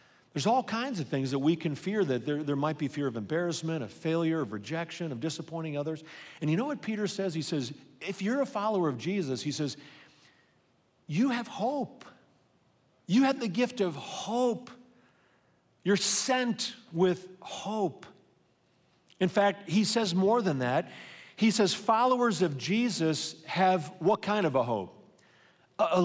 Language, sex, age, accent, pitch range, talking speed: English, male, 50-69, American, 155-210 Hz, 170 wpm